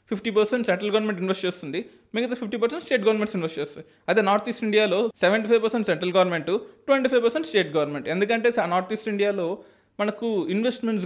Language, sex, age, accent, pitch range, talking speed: Telugu, male, 20-39, native, 170-230 Hz, 180 wpm